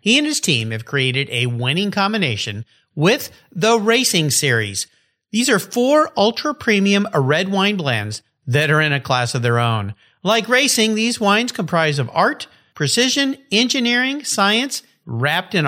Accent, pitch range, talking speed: American, 135-225 Hz, 155 wpm